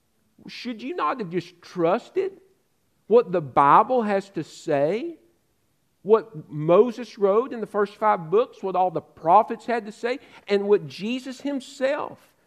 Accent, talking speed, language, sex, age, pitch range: American, 150 wpm, English, male, 50-69, 150-225 Hz